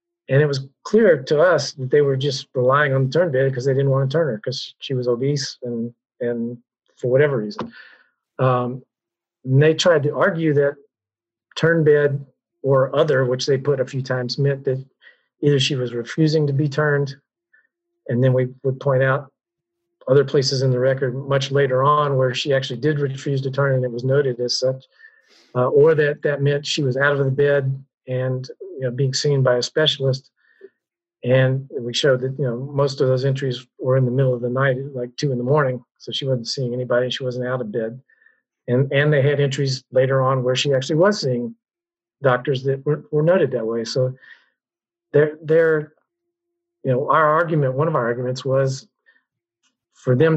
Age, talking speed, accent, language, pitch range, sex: 40-59, 200 wpm, American, English, 130-150 Hz, male